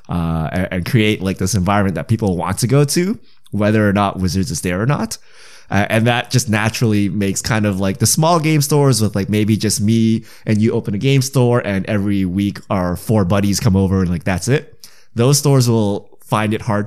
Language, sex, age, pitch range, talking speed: English, male, 20-39, 100-130 Hz, 220 wpm